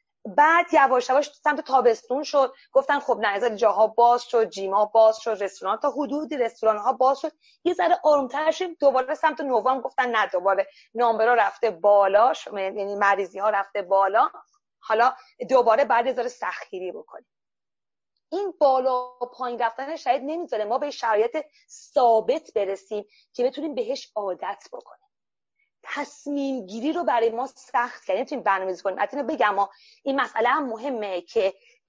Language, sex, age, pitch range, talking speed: Persian, female, 30-49, 220-305 Hz, 145 wpm